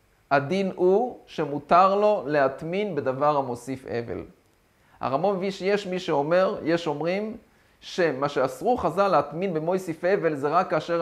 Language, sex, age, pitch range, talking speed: Hebrew, male, 30-49, 150-190 Hz, 130 wpm